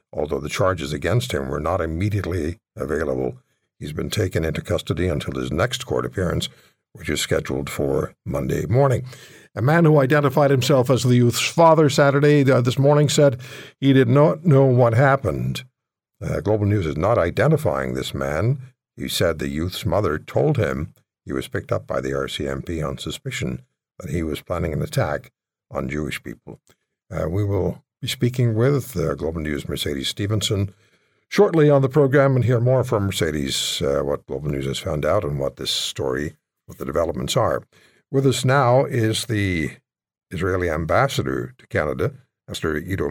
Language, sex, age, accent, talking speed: English, male, 60-79, American, 170 wpm